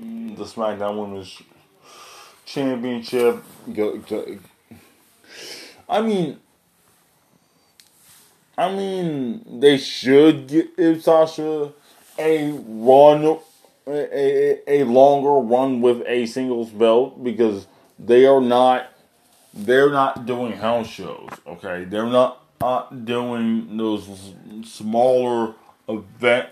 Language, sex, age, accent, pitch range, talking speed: English, male, 20-39, American, 100-130 Hz, 90 wpm